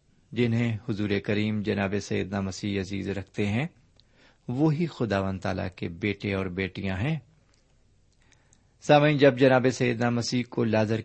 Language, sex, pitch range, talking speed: Urdu, male, 100-135 Hz, 135 wpm